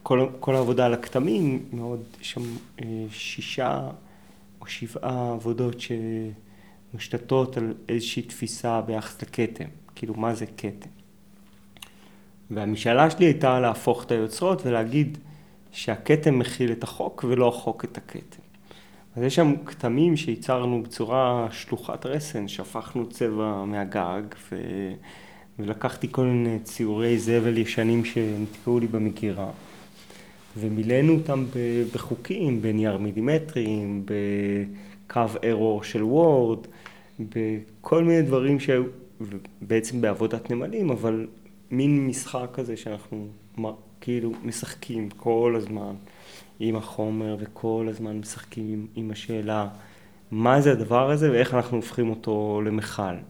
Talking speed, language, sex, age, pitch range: 110 wpm, Hebrew, male, 30-49, 110-125 Hz